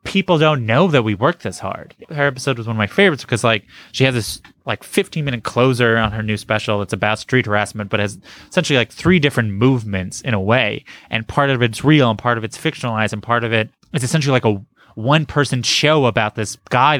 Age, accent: 20-39, American